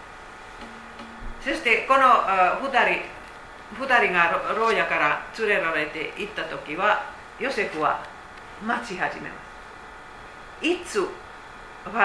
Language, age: Japanese, 50-69